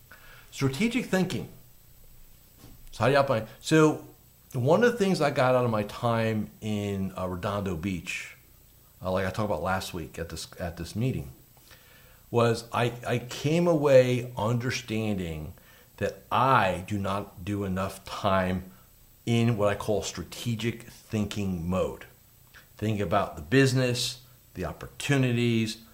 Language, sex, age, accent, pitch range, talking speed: English, male, 50-69, American, 100-125 Hz, 135 wpm